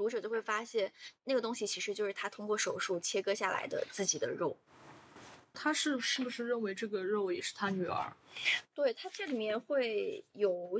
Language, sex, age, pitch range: Chinese, female, 20-39, 205-300 Hz